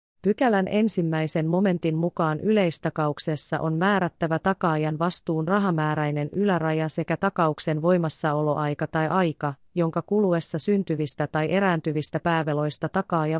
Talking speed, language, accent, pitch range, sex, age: 105 wpm, Finnish, native, 155-195 Hz, female, 30-49